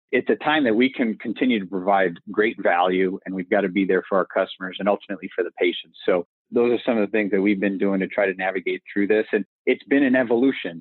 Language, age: English, 40-59